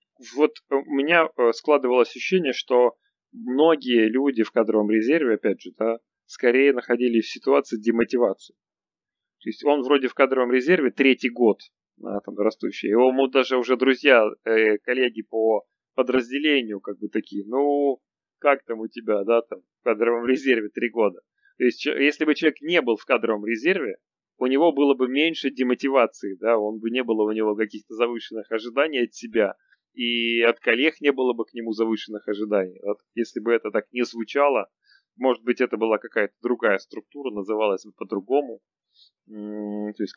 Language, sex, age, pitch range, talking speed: Russian, male, 30-49, 110-135 Hz, 160 wpm